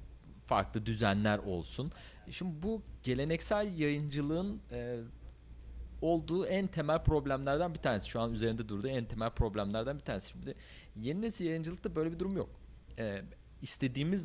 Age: 40-59